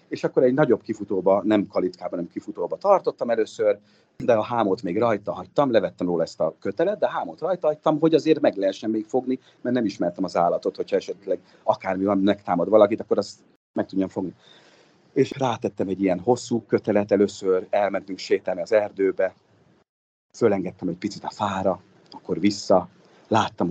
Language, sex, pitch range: Hungarian, male, 100-150 Hz